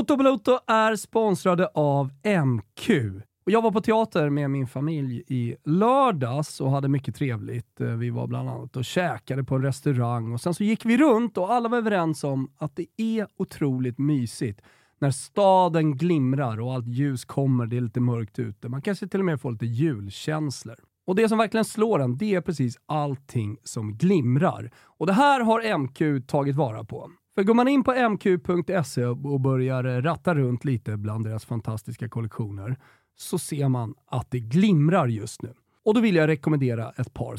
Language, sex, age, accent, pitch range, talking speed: Swedish, male, 30-49, native, 125-190 Hz, 185 wpm